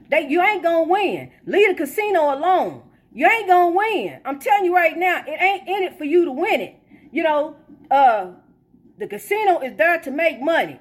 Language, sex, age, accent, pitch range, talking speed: English, female, 40-59, American, 245-320 Hz, 205 wpm